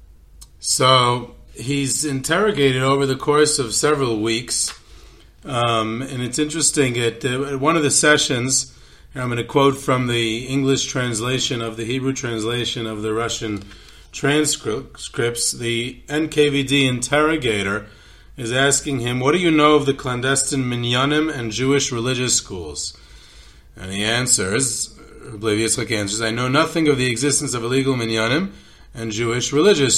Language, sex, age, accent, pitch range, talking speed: English, male, 30-49, American, 110-145 Hz, 145 wpm